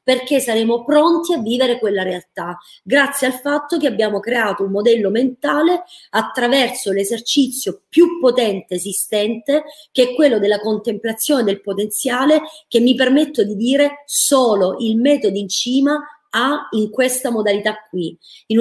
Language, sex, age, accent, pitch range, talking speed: Italian, female, 30-49, native, 205-275 Hz, 140 wpm